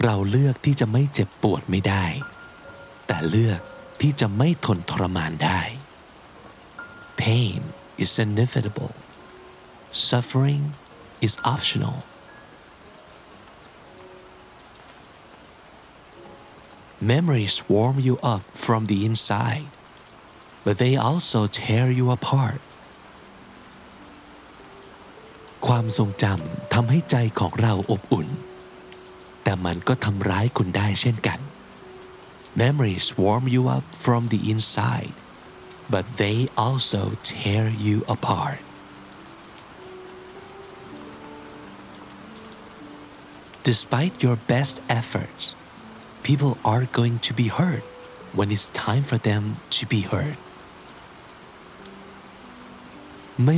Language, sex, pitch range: Thai, male, 105-130 Hz